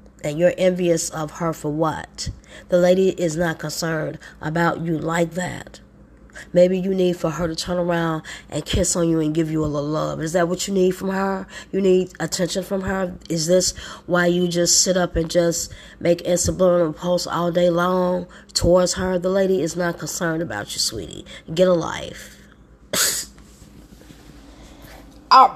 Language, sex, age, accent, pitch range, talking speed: English, female, 20-39, American, 160-185 Hz, 175 wpm